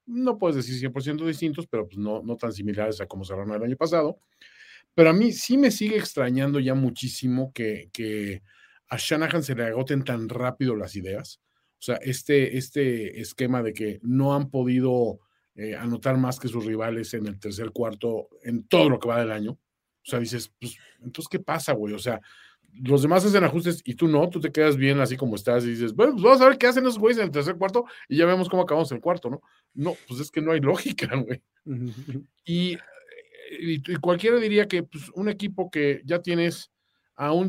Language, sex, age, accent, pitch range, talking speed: Spanish, male, 40-59, Mexican, 120-170 Hz, 210 wpm